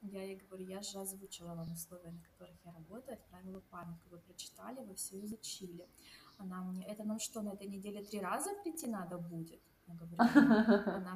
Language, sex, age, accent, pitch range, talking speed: Russian, female, 20-39, native, 185-235 Hz, 175 wpm